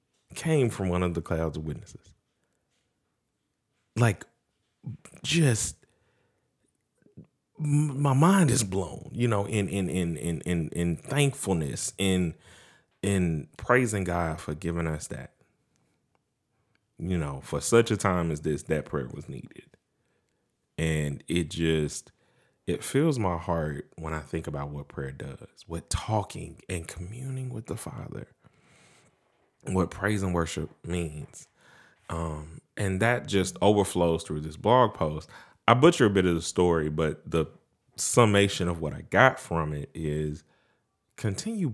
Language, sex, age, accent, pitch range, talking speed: English, male, 30-49, American, 80-115 Hz, 140 wpm